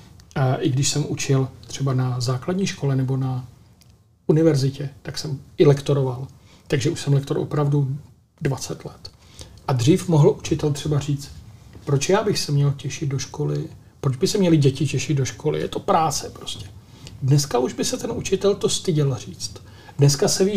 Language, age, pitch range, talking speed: Czech, 40-59, 130-150 Hz, 175 wpm